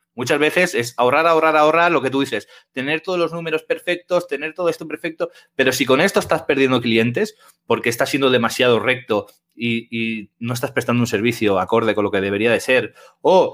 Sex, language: male, Spanish